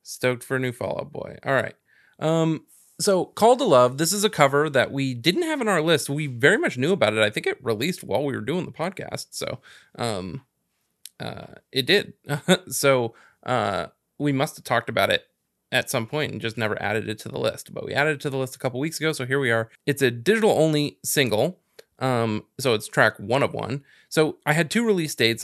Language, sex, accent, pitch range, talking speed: English, male, American, 120-150 Hz, 230 wpm